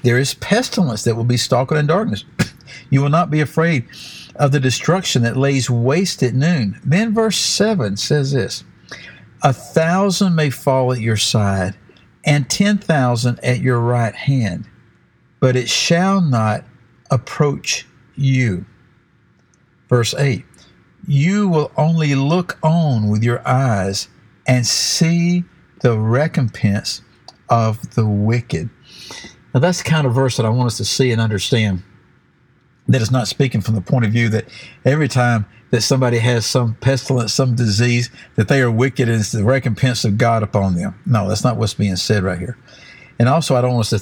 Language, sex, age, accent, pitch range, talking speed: English, male, 60-79, American, 115-145 Hz, 170 wpm